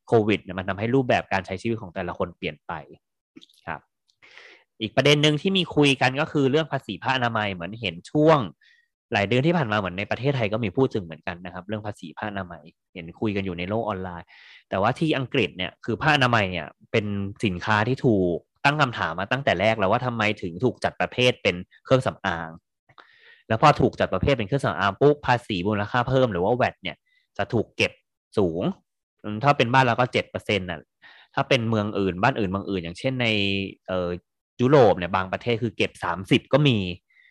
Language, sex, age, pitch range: Thai, male, 20-39, 95-130 Hz